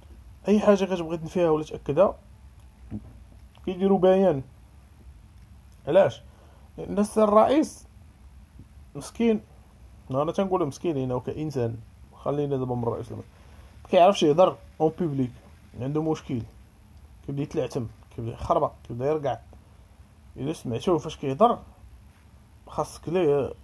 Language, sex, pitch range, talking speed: Arabic, male, 100-170 Hz, 105 wpm